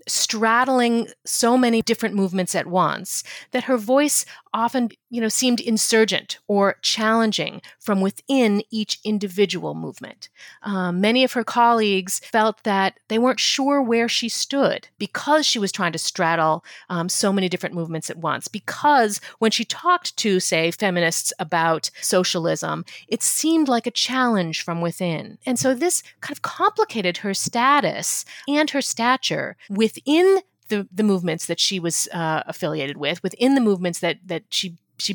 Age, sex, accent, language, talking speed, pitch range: 40-59, female, American, English, 160 wpm, 180-245 Hz